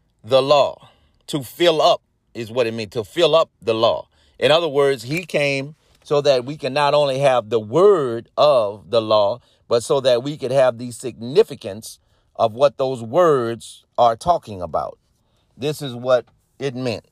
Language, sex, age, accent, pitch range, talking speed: English, male, 30-49, American, 110-140 Hz, 180 wpm